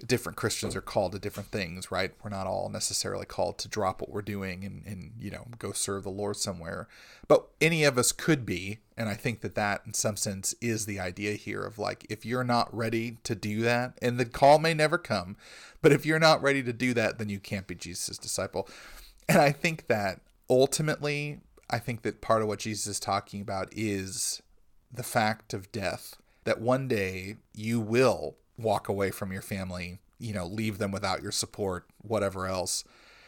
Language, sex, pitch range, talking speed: English, male, 100-115 Hz, 205 wpm